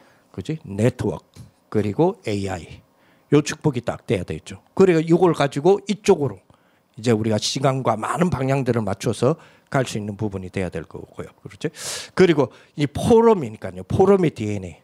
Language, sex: Korean, male